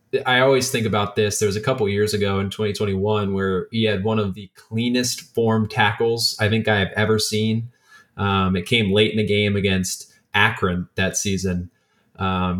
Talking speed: 195 wpm